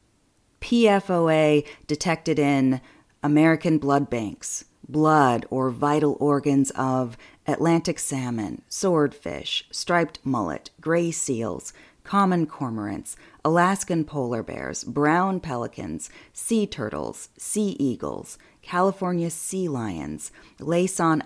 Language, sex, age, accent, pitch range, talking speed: English, female, 30-49, American, 140-170 Hz, 95 wpm